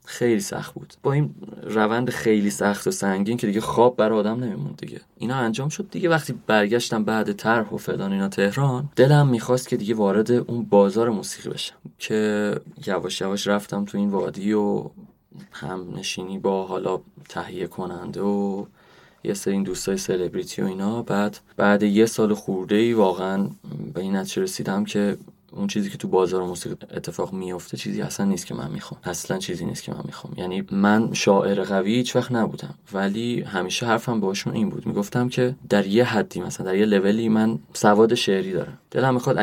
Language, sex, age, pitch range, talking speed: Persian, male, 20-39, 100-120 Hz, 180 wpm